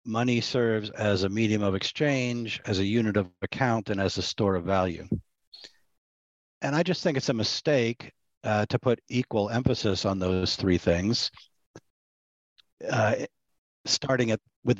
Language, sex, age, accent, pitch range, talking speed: English, male, 50-69, American, 95-130 Hz, 155 wpm